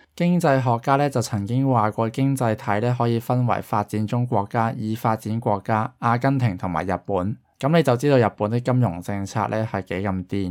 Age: 20-39